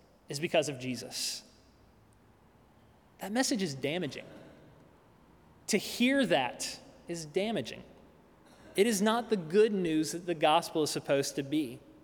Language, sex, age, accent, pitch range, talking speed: English, male, 20-39, American, 165-225 Hz, 130 wpm